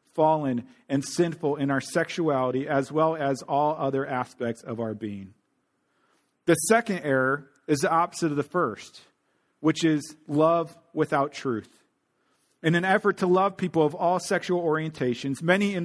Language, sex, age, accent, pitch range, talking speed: English, male, 40-59, American, 135-175 Hz, 155 wpm